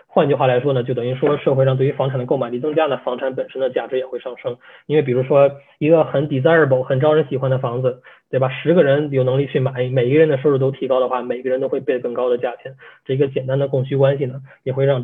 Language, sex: Chinese, male